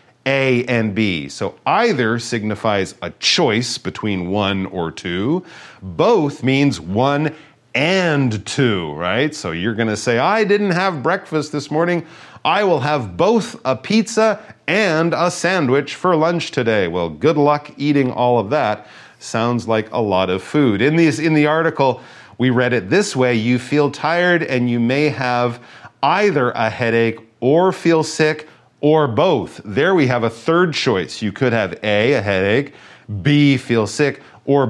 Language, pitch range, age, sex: Chinese, 115-155 Hz, 40-59, male